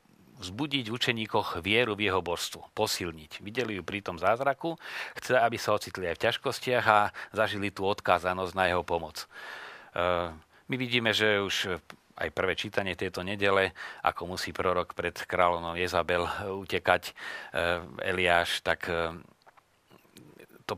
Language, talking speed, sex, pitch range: Slovak, 140 wpm, male, 85-100 Hz